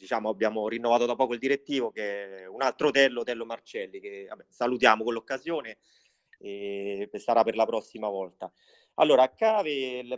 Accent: native